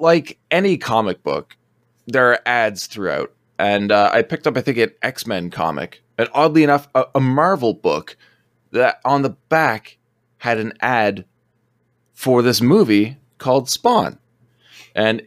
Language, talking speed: English, 150 wpm